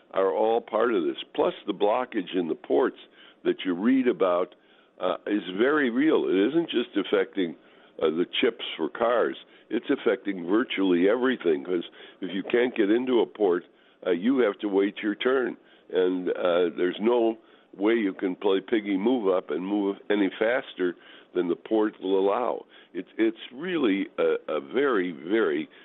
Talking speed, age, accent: 170 wpm, 60-79, American